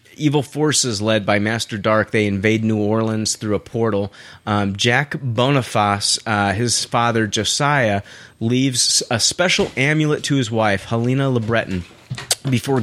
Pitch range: 105-130 Hz